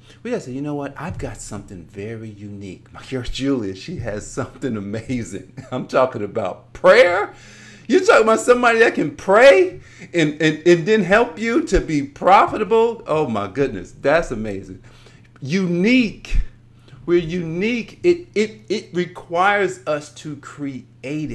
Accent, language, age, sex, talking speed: American, English, 50-69, male, 145 wpm